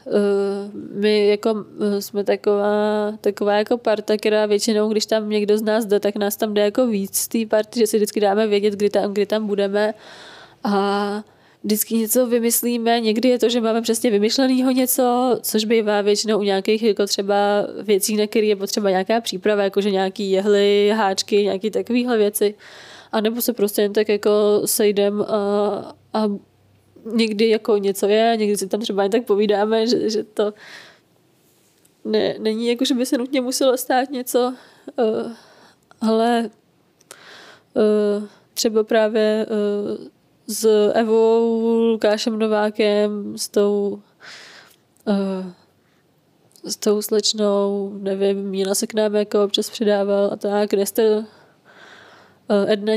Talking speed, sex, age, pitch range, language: 145 wpm, female, 20-39, 205-225 Hz, Czech